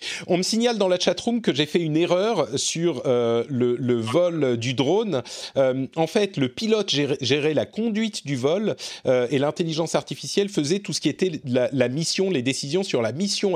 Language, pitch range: French, 120-180 Hz